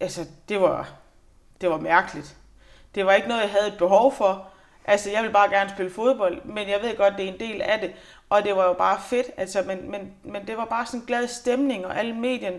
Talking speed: 250 wpm